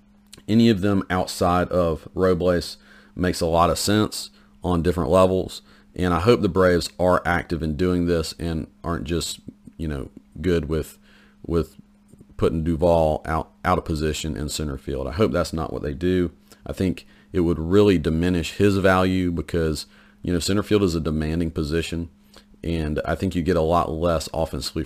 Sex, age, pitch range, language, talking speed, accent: male, 40-59, 80-95 Hz, English, 180 wpm, American